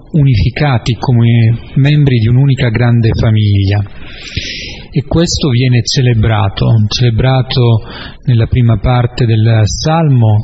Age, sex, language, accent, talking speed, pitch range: 30-49, male, Italian, native, 100 wpm, 115-140 Hz